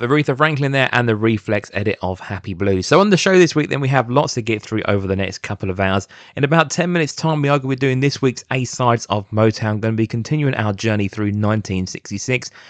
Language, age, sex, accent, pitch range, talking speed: English, 20-39, male, British, 100-130 Hz, 265 wpm